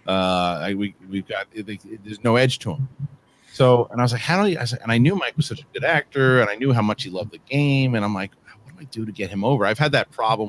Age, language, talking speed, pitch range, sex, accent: 30-49, English, 320 wpm, 100-125 Hz, male, American